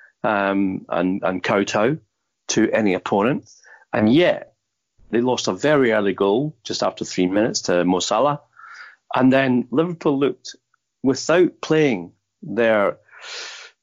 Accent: British